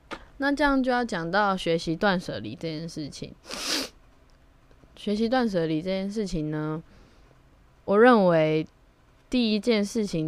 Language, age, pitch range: Chinese, 10-29, 155-210 Hz